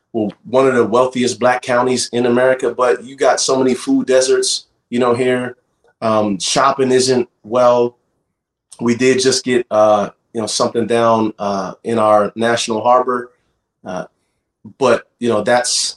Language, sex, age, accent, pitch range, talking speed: English, male, 30-49, American, 115-130 Hz, 155 wpm